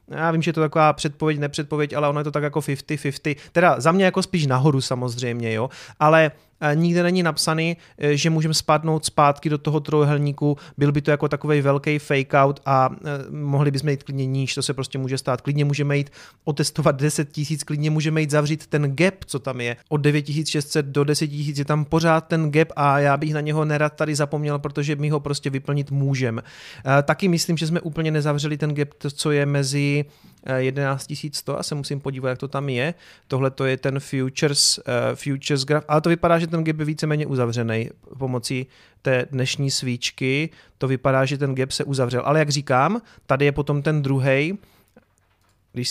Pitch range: 135-155 Hz